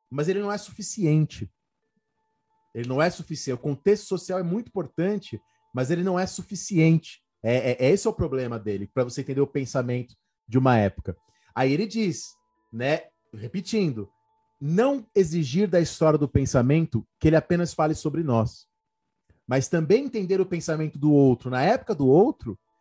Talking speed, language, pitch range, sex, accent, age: 160 wpm, Portuguese, 130-195 Hz, male, Brazilian, 30-49